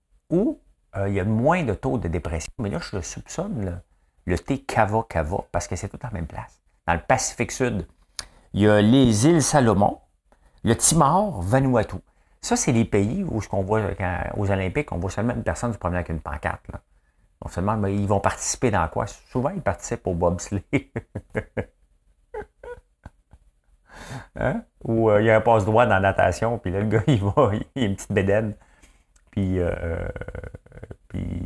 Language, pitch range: French, 85-110 Hz